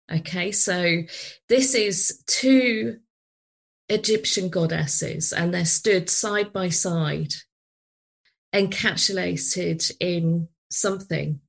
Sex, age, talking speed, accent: female, 30-49, 85 wpm, British